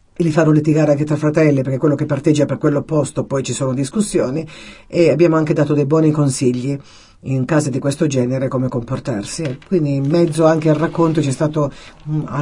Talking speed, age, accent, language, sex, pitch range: 200 wpm, 50-69, native, Italian, female, 135-155 Hz